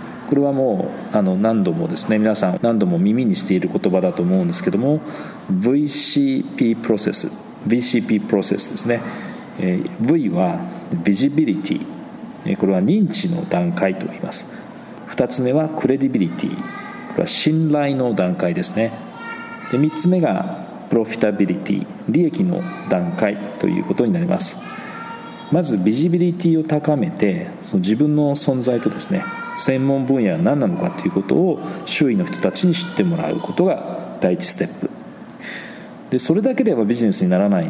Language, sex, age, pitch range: Japanese, male, 40-59, 130-200 Hz